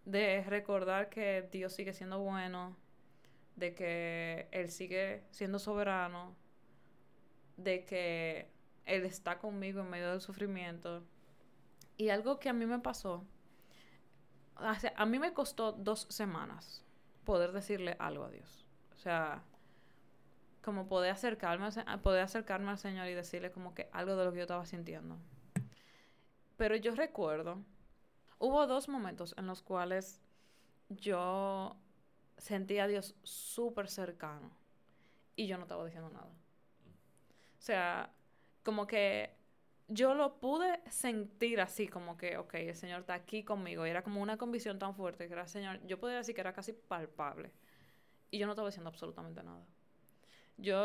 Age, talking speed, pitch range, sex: 20-39, 145 wpm, 175-210 Hz, female